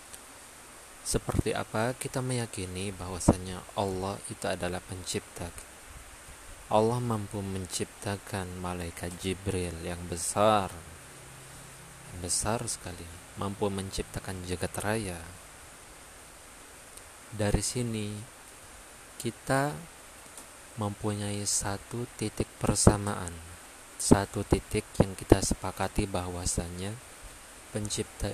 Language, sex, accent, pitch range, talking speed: Indonesian, male, native, 90-110 Hz, 75 wpm